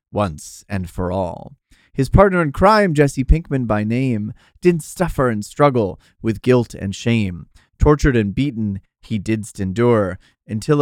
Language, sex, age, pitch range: English, male, 30-49, 95-135 Hz